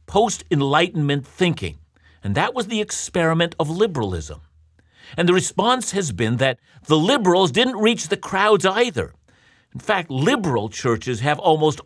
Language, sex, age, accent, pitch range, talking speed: English, male, 50-69, American, 110-165 Hz, 140 wpm